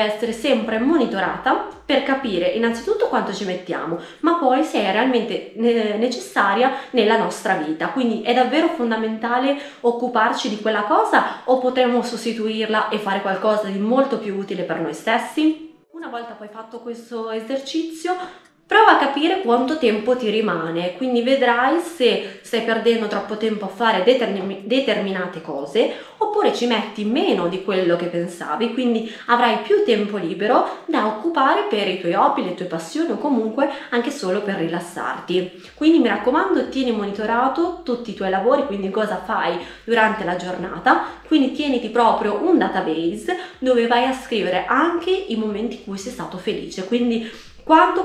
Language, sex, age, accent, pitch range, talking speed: Italian, female, 20-39, native, 200-260 Hz, 155 wpm